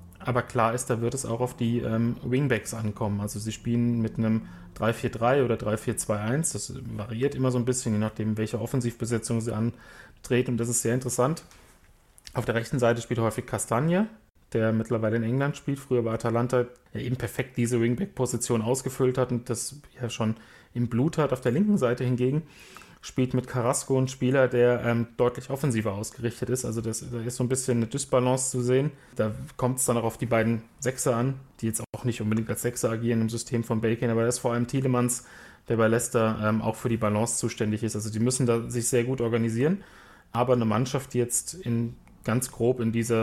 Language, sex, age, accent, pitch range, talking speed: German, male, 30-49, German, 115-130 Hz, 205 wpm